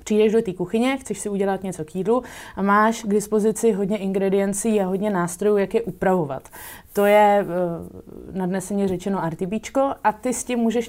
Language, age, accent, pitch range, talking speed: Czech, 20-39, native, 180-215 Hz, 180 wpm